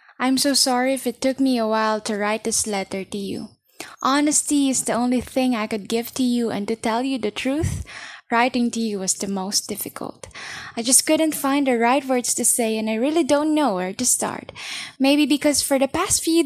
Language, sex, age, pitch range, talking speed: Filipino, female, 10-29, 225-280 Hz, 220 wpm